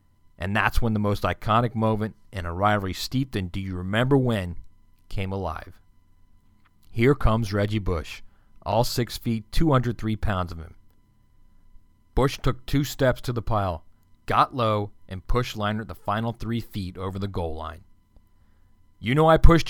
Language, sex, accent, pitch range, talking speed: English, male, American, 90-110 Hz, 150 wpm